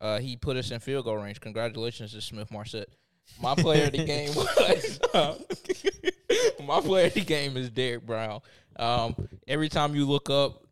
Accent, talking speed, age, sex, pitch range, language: American, 185 wpm, 20-39, male, 110-130 Hz, English